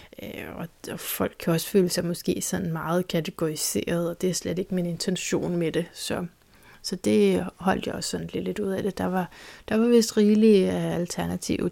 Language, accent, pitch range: Danish, native, 180-205 Hz